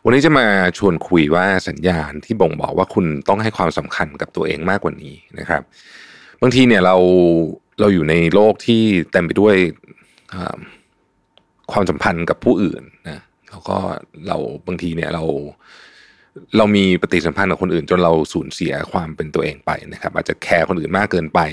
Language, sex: Thai, male